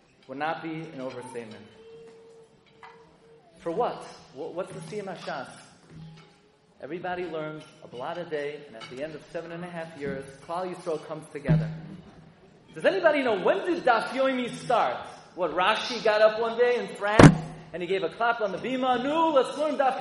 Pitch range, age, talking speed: 185-290 Hz, 30-49, 170 wpm